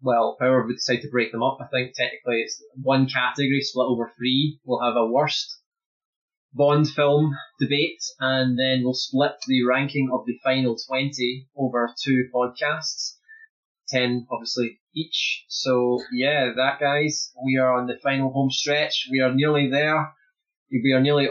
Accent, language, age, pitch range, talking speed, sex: British, English, 20-39, 125-145 Hz, 165 wpm, male